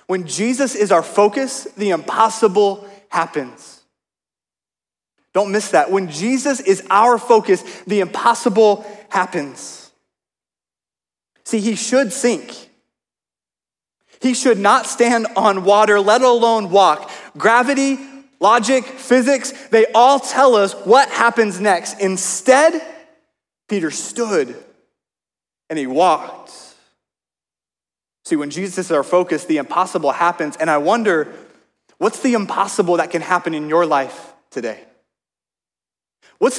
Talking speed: 115 wpm